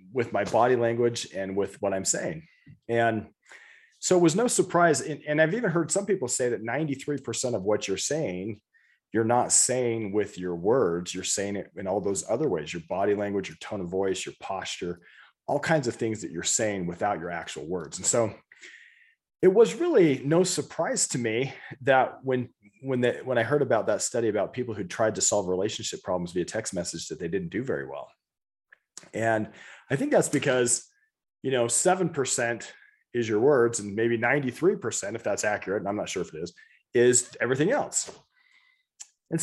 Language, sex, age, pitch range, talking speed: English, male, 30-49, 100-155 Hz, 190 wpm